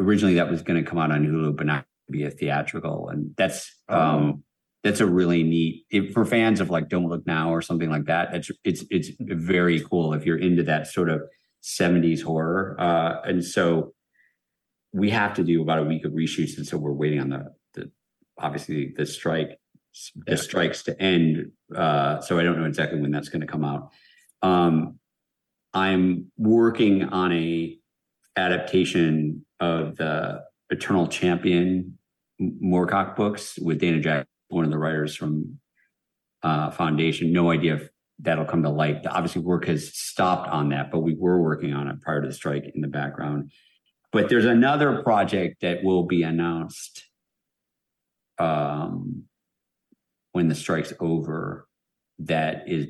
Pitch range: 75-90 Hz